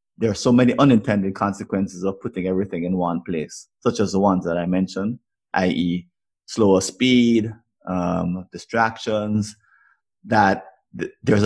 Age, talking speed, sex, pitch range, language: 30-49, 140 wpm, male, 95-110 Hz, English